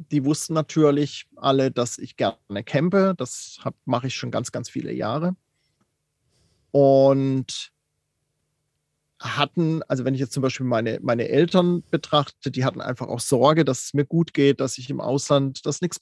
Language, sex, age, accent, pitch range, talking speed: German, male, 40-59, German, 140-175 Hz, 165 wpm